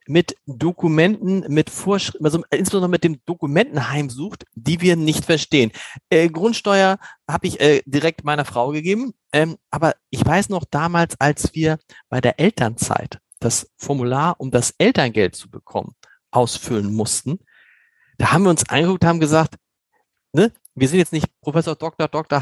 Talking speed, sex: 155 wpm, male